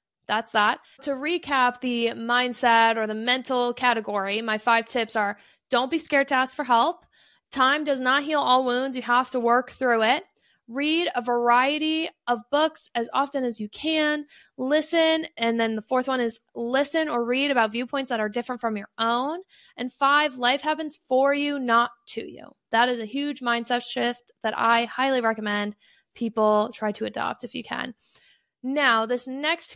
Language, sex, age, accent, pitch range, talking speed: English, female, 20-39, American, 230-275 Hz, 180 wpm